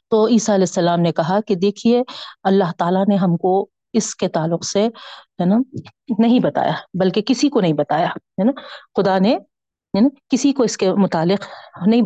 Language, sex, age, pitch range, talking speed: Urdu, female, 40-59, 180-240 Hz, 185 wpm